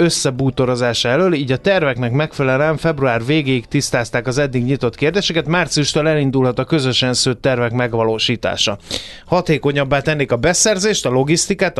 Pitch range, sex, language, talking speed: 120-150 Hz, male, Hungarian, 130 wpm